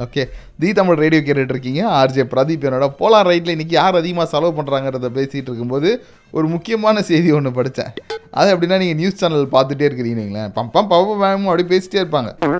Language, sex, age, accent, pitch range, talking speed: Tamil, male, 30-49, native, 155-210 Hz, 165 wpm